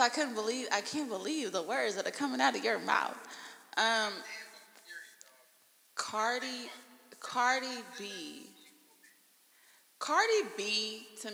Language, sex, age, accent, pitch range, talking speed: English, female, 20-39, American, 175-245 Hz, 115 wpm